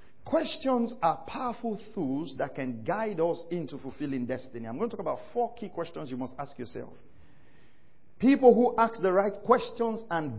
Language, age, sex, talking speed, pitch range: English, 50-69, male, 175 wpm, 145-245 Hz